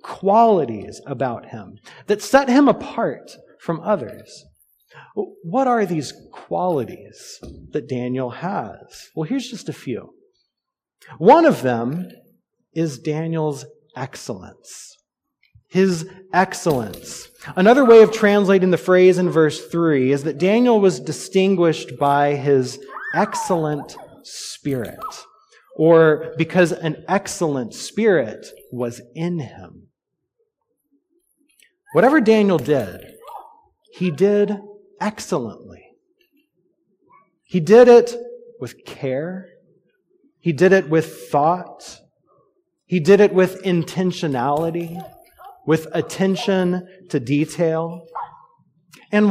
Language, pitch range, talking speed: English, 160-220 Hz, 100 wpm